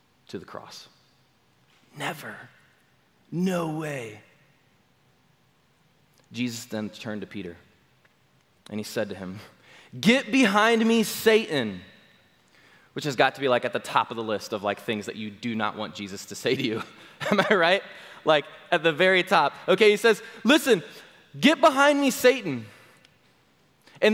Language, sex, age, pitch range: English, male, 20-39, 140-230 Hz